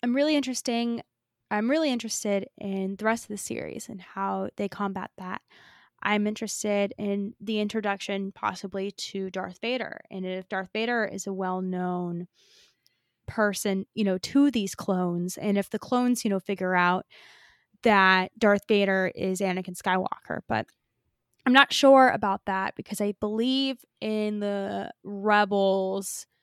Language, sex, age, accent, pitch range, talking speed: English, female, 20-39, American, 190-225 Hz, 150 wpm